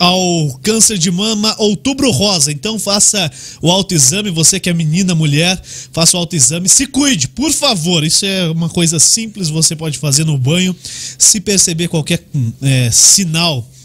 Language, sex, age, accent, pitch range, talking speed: Portuguese, male, 20-39, Brazilian, 150-200 Hz, 155 wpm